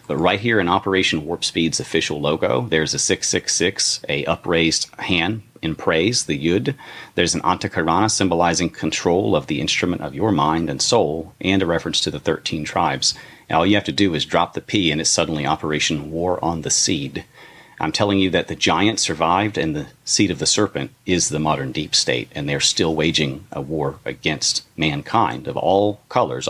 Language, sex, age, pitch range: English, male, 40-59, 75-90 Hz